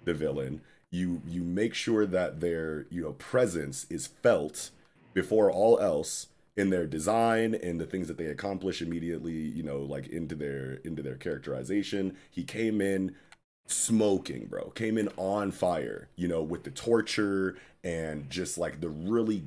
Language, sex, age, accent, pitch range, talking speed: English, male, 30-49, American, 80-100 Hz, 165 wpm